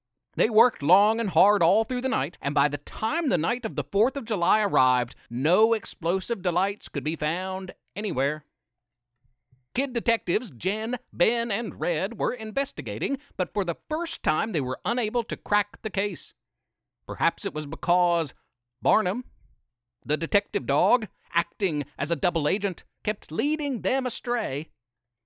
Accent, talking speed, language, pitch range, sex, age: American, 155 wpm, English, 155-220 Hz, male, 50-69